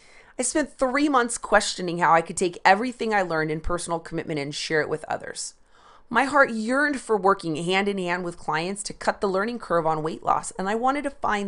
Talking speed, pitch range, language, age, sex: 225 wpm, 165-255 Hz, English, 30-49, female